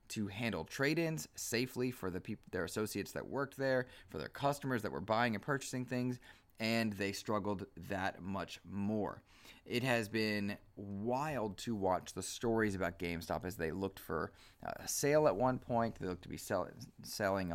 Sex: male